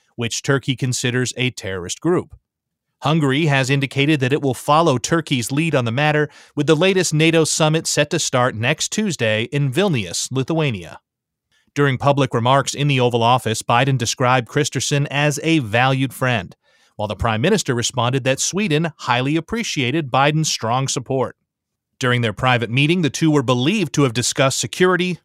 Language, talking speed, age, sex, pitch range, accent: English, 165 wpm, 30-49, male, 125-155 Hz, American